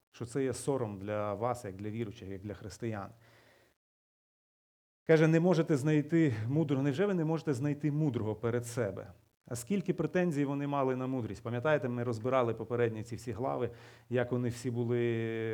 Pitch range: 115-140 Hz